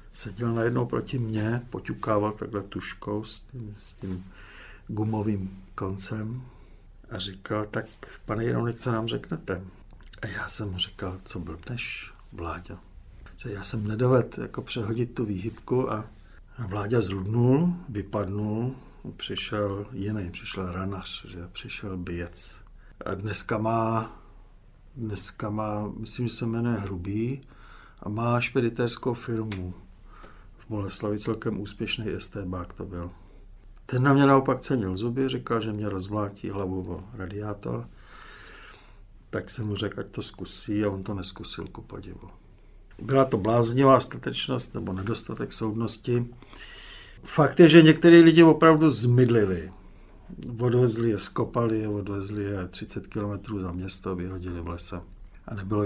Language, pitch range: Czech, 95-115 Hz